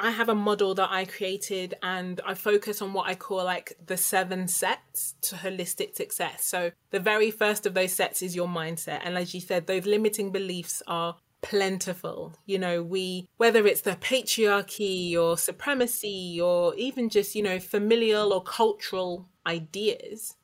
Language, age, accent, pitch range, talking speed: English, 20-39, British, 180-215 Hz, 170 wpm